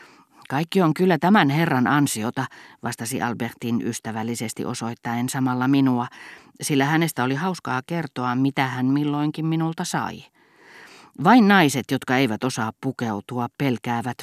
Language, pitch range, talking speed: Finnish, 120-145 Hz, 120 wpm